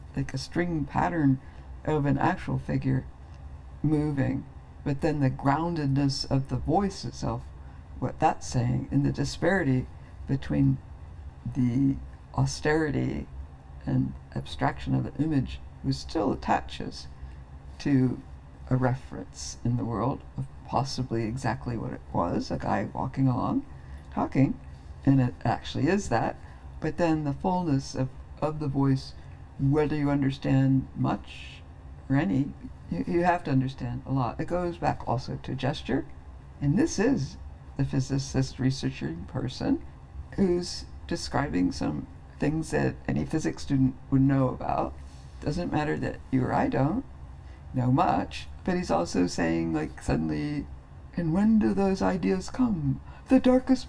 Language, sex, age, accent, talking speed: English, female, 60-79, American, 135 wpm